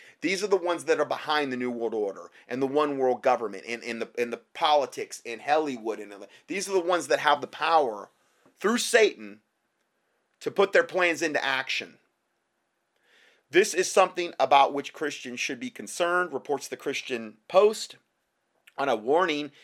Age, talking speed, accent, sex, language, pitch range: 30-49, 175 wpm, American, male, English, 120-185 Hz